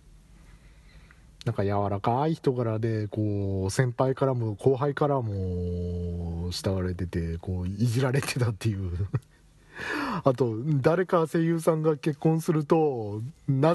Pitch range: 95-135 Hz